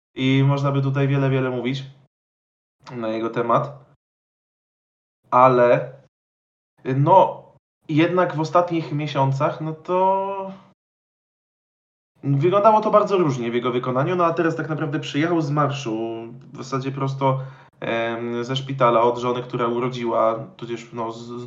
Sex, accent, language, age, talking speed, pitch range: male, native, Polish, 20-39, 125 wpm, 125-150 Hz